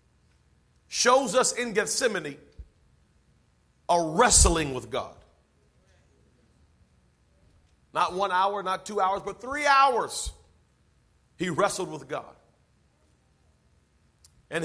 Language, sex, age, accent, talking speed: English, male, 40-59, American, 90 wpm